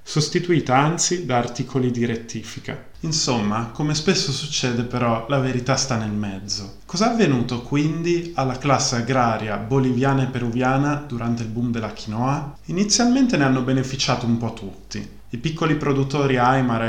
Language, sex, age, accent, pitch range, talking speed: Italian, male, 20-39, native, 115-145 Hz, 150 wpm